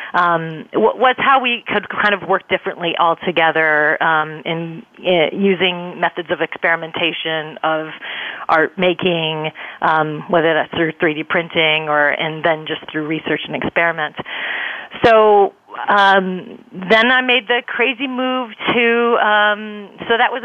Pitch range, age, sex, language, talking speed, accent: 170-215 Hz, 30-49, female, English, 145 wpm, American